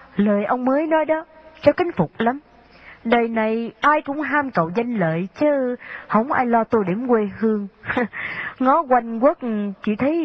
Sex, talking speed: female, 175 wpm